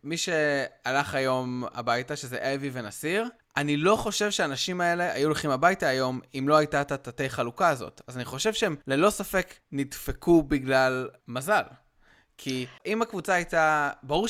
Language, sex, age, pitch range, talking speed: Hebrew, male, 20-39, 130-160 Hz, 150 wpm